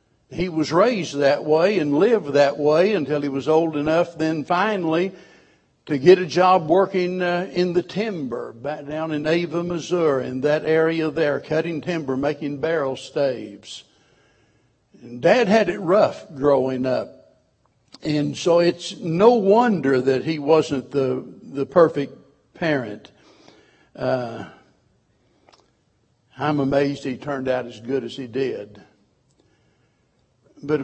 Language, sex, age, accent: English, male, 60-79, American